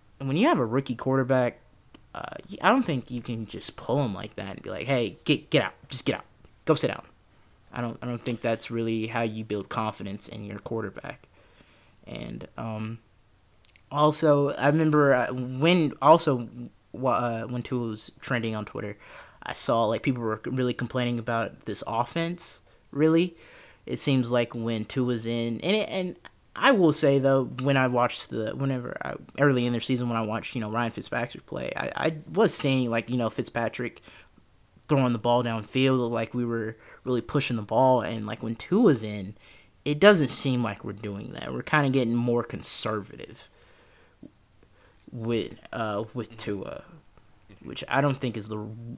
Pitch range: 115-135 Hz